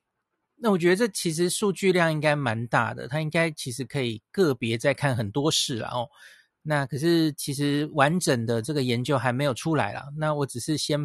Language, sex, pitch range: Chinese, male, 130-165 Hz